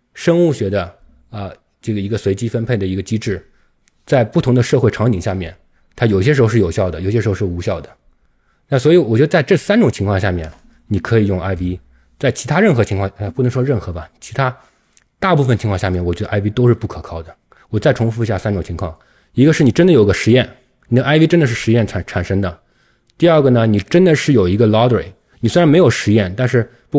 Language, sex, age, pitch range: Chinese, male, 20-39, 90-120 Hz